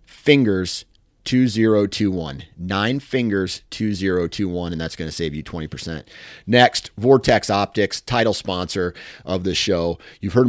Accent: American